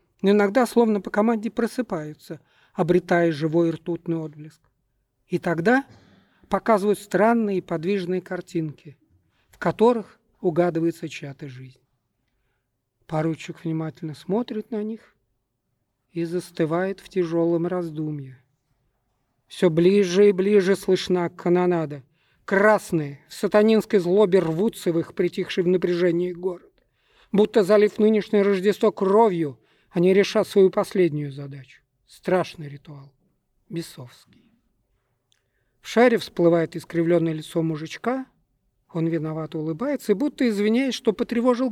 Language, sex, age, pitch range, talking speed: Russian, male, 50-69, 150-210 Hz, 110 wpm